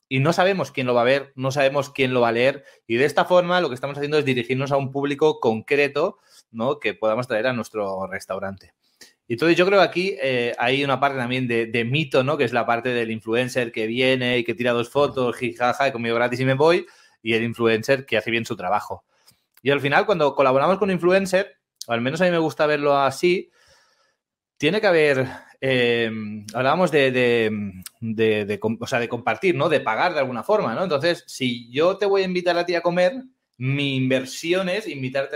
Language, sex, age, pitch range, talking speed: Spanish, male, 30-49, 120-150 Hz, 220 wpm